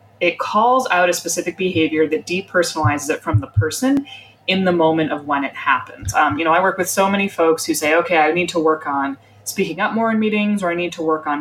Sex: female